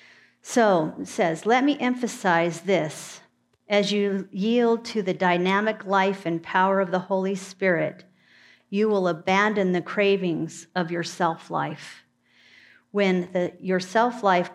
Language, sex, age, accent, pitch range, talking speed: English, female, 50-69, American, 170-215 Hz, 130 wpm